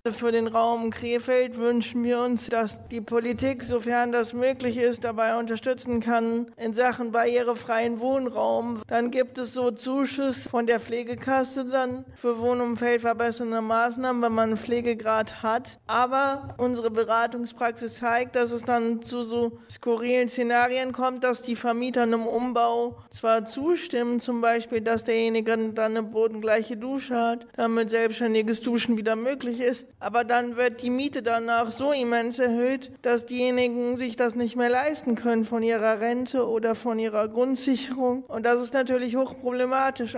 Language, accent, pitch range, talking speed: German, German, 235-250 Hz, 150 wpm